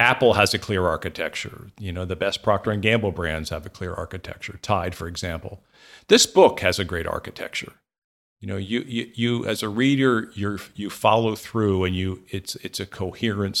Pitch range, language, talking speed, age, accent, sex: 95-115 Hz, English, 195 wpm, 50-69, American, male